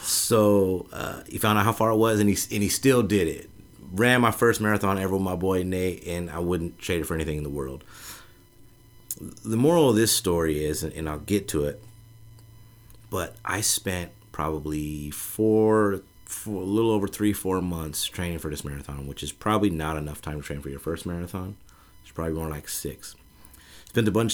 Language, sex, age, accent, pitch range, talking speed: English, male, 30-49, American, 80-105 Hz, 200 wpm